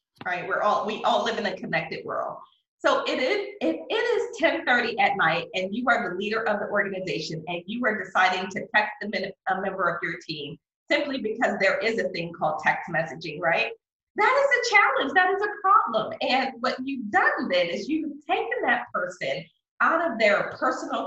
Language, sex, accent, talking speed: English, female, American, 200 wpm